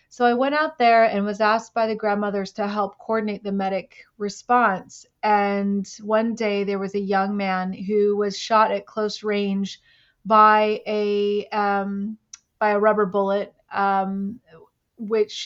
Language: English